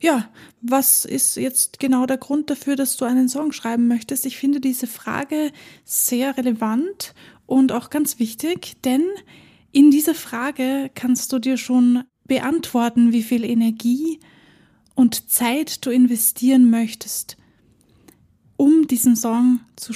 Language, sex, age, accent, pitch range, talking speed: German, female, 20-39, German, 240-275 Hz, 135 wpm